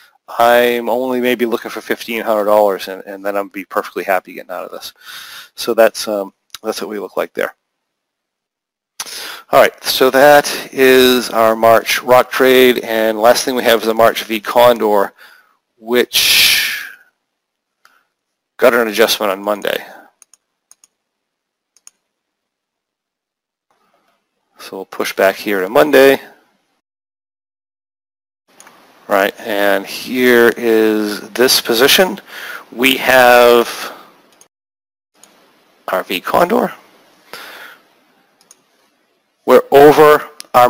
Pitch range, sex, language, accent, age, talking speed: 105-125 Hz, male, English, American, 40-59, 110 wpm